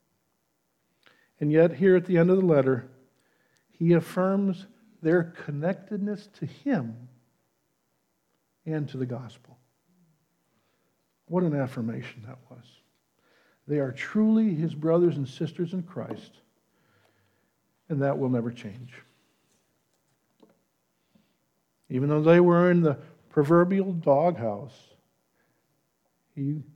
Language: English